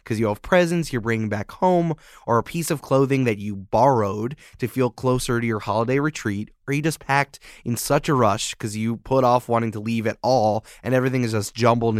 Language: English